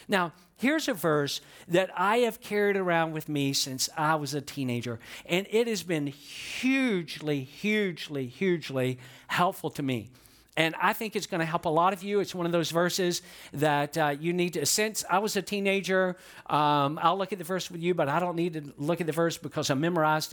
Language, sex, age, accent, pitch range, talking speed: English, male, 50-69, American, 145-185 Hz, 215 wpm